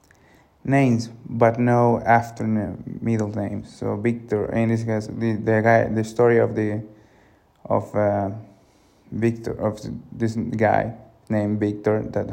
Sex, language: male, English